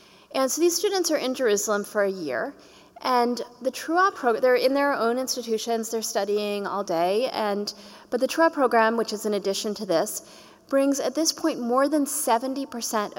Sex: female